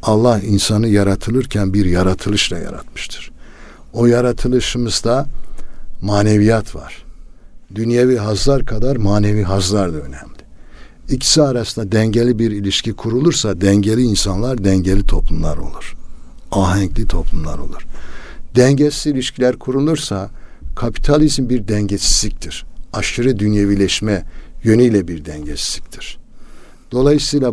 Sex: male